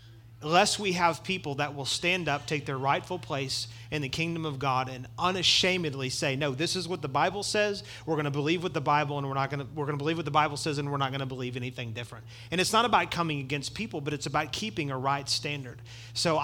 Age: 40-59